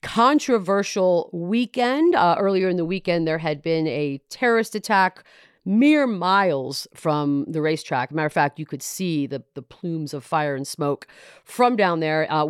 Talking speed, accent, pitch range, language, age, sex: 170 wpm, American, 155-215 Hz, English, 40-59, female